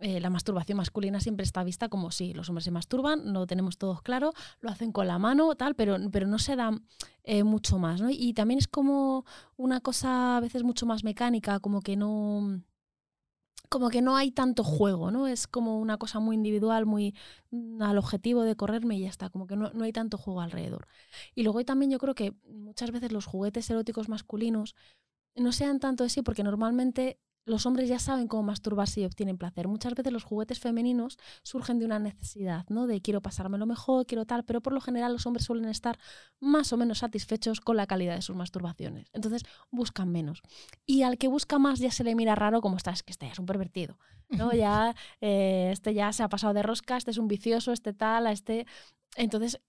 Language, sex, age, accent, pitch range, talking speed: Spanish, female, 20-39, Spanish, 200-245 Hz, 215 wpm